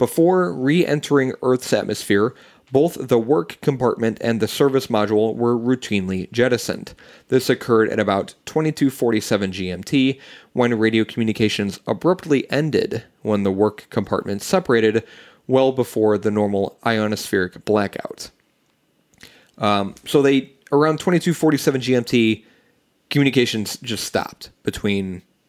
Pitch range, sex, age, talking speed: 105-140 Hz, male, 30-49, 110 wpm